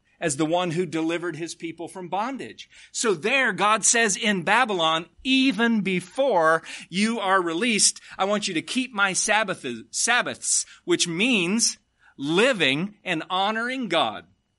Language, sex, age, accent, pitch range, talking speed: English, male, 40-59, American, 145-210 Hz, 135 wpm